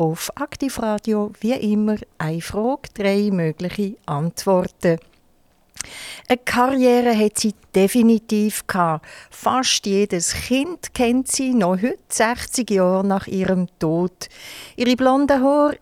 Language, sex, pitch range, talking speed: German, female, 180-235 Hz, 110 wpm